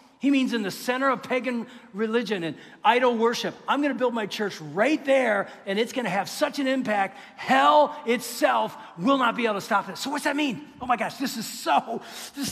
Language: English